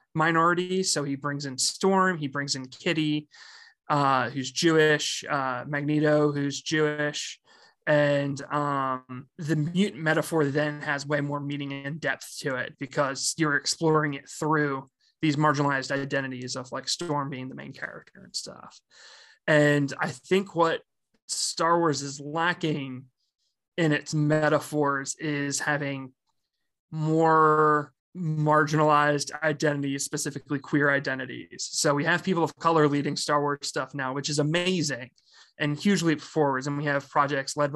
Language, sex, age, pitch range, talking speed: English, male, 20-39, 140-155 Hz, 140 wpm